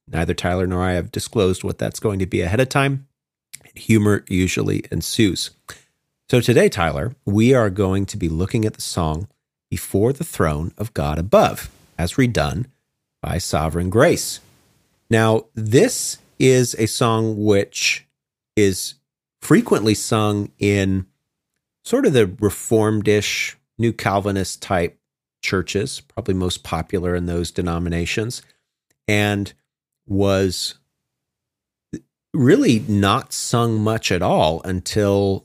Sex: male